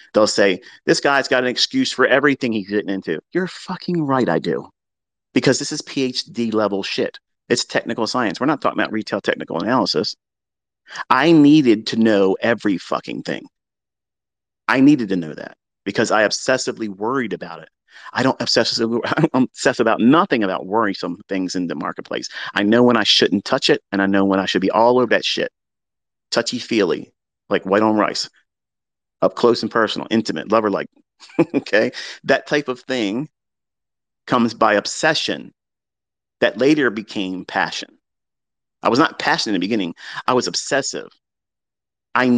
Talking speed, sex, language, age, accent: 165 wpm, male, English, 40-59, American